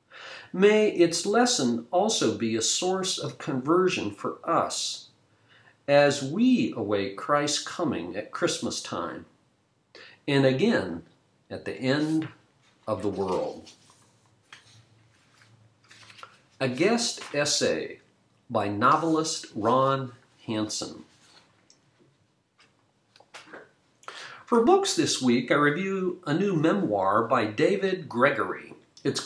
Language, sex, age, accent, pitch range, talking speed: English, male, 50-69, American, 115-180 Hz, 95 wpm